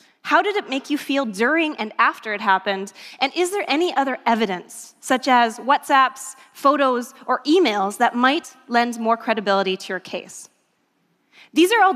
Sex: female